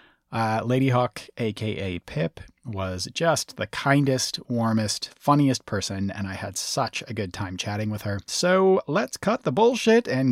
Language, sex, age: English, male, 30-49